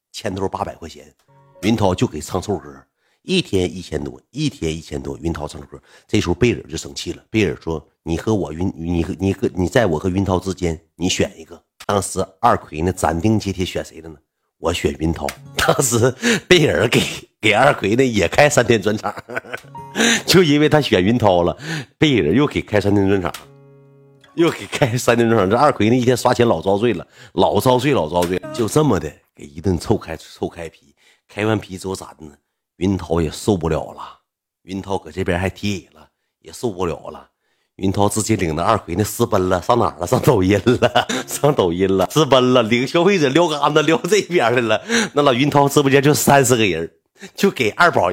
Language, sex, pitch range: Chinese, male, 90-140 Hz